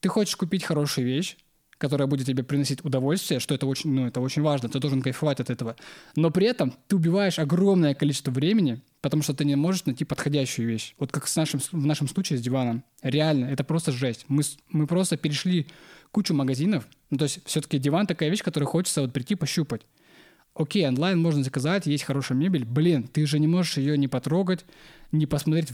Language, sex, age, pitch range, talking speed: Russian, male, 20-39, 135-165 Hz, 200 wpm